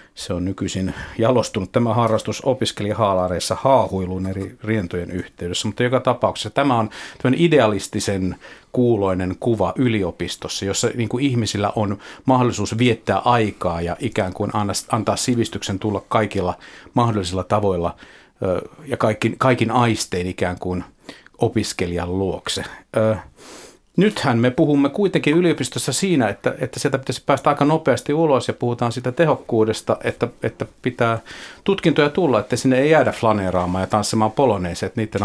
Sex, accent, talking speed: male, native, 130 wpm